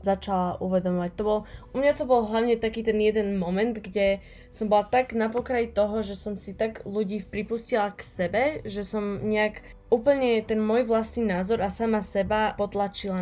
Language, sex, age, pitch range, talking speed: Slovak, female, 20-39, 185-215 Hz, 180 wpm